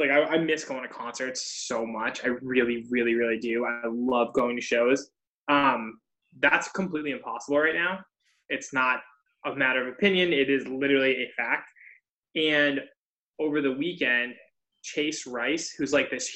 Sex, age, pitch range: male, 10-29, 130-160 Hz